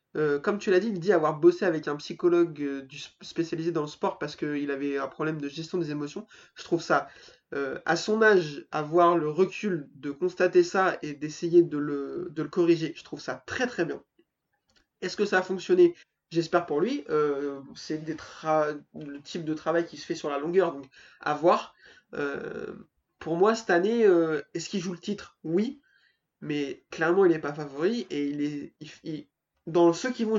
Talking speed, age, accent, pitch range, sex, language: 205 wpm, 20-39, French, 155-185 Hz, male, French